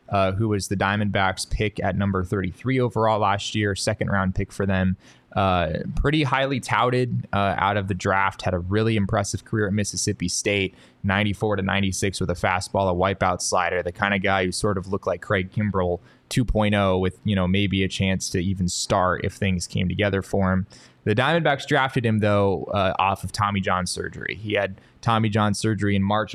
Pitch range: 95-110 Hz